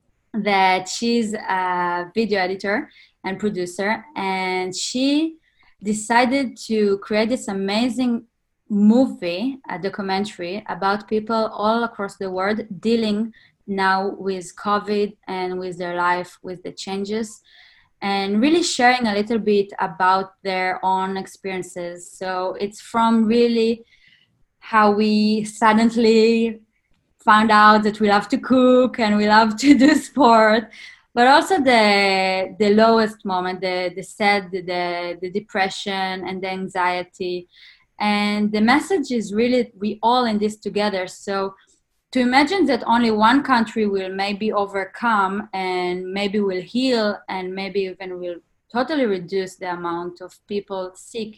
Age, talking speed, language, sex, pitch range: 20-39, 135 wpm, English, female, 190-230 Hz